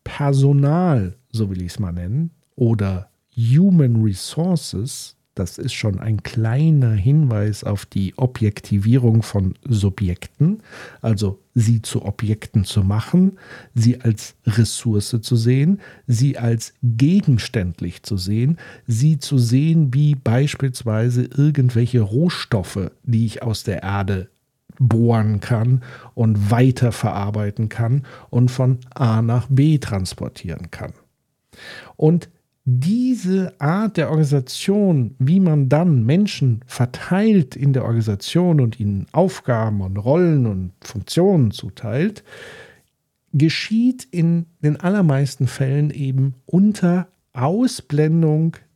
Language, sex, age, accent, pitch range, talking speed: German, male, 50-69, German, 110-155 Hz, 110 wpm